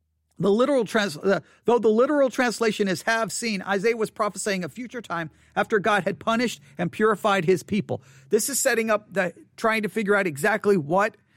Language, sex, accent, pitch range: English, male, American, 160-220 Hz